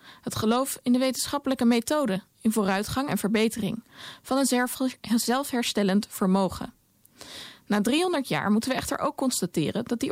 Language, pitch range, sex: Dutch, 200-255 Hz, female